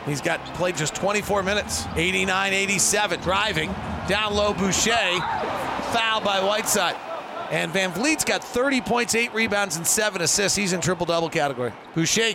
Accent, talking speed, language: American, 145 wpm, English